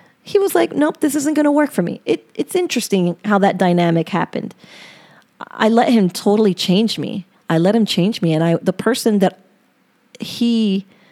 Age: 30-49